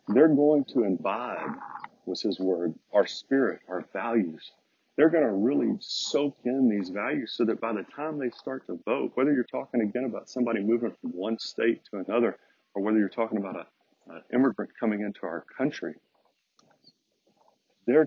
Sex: male